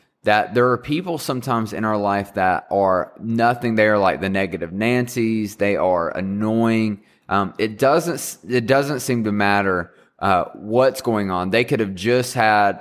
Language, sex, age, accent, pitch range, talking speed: English, male, 20-39, American, 95-115 Hz, 175 wpm